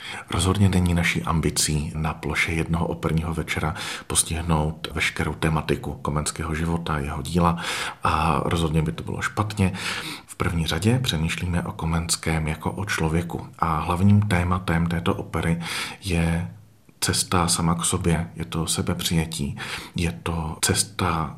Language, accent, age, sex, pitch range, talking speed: Czech, native, 40-59, male, 80-90 Hz, 130 wpm